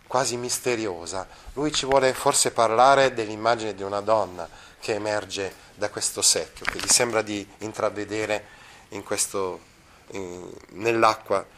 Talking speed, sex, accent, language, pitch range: 115 wpm, male, native, Italian, 105-135 Hz